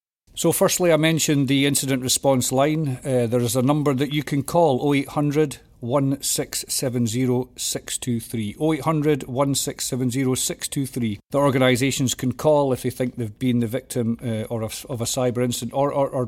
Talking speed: 150 wpm